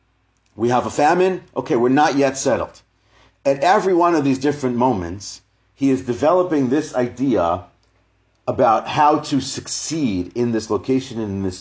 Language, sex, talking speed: English, male, 160 wpm